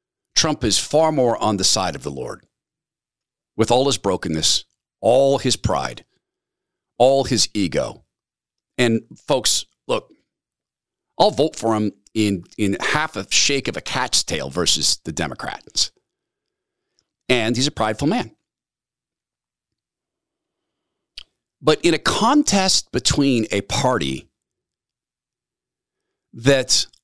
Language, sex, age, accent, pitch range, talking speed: English, male, 50-69, American, 110-145 Hz, 115 wpm